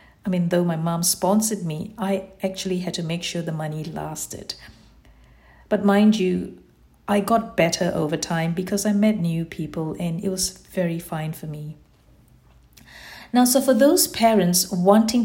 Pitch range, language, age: 175-215 Hz, English, 50-69